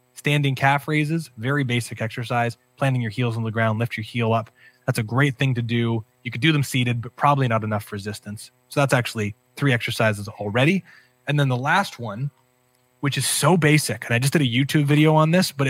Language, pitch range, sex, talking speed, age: English, 125-150 Hz, male, 220 wpm, 20-39